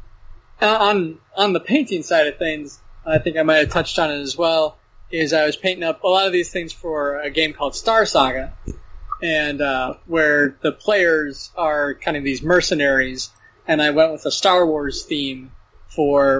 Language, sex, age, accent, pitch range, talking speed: English, male, 20-39, American, 140-165 Hz, 190 wpm